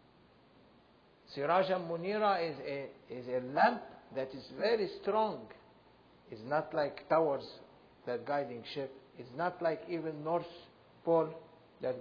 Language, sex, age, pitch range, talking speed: English, male, 60-79, 155-250 Hz, 125 wpm